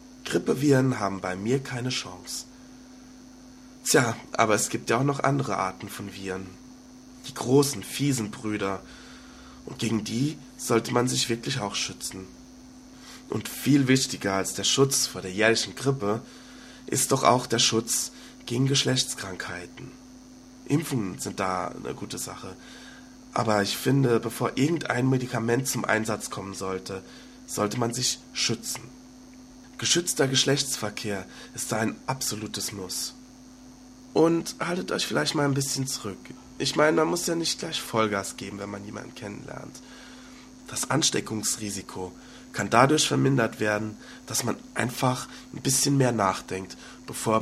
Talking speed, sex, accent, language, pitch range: 135 wpm, male, German, German, 110-160 Hz